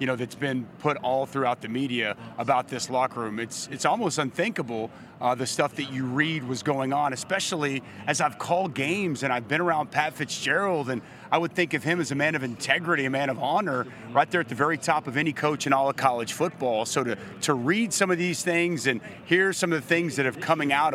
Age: 30-49